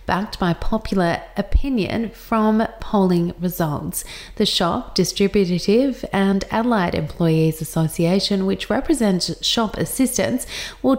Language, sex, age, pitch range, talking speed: English, female, 30-49, 175-225 Hz, 105 wpm